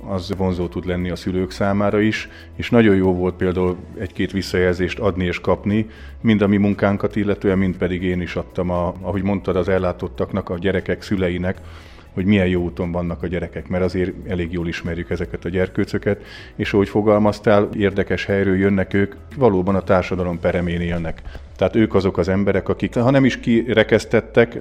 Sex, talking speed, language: male, 175 wpm, Hungarian